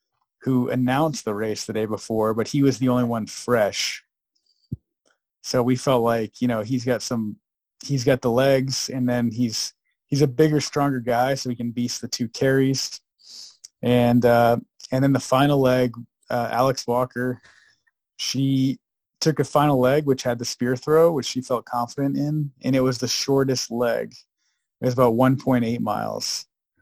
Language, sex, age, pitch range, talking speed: English, male, 30-49, 120-135 Hz, 175 wpm